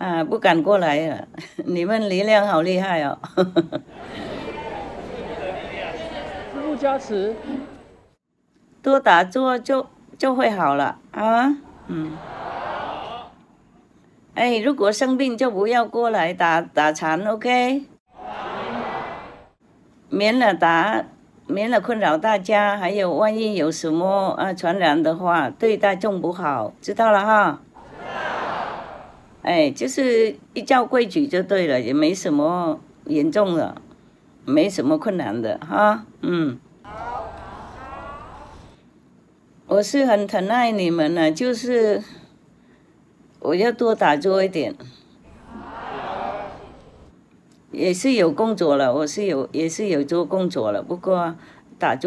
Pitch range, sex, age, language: 165-240 Hz, female, 60-79, English